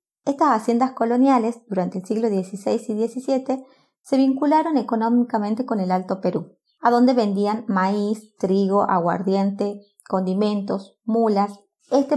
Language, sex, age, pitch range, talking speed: Spanish, female, 30-49, 200-250 Hz, 125 wpm